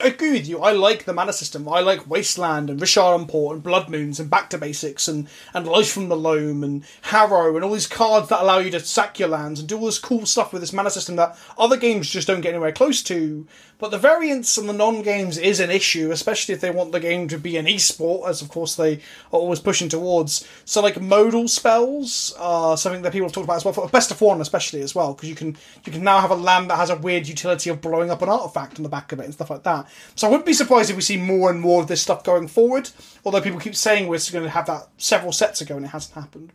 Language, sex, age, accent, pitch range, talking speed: English, male, 20-39, British, 170-220 Hz, 275 wpm